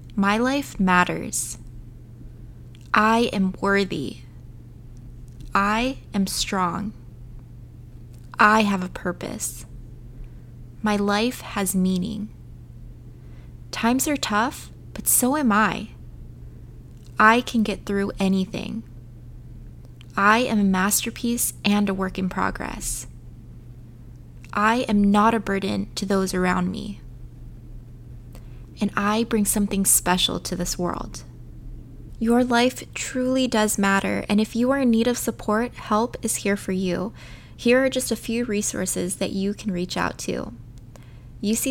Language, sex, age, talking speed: English, female, 20-39, 125 wpm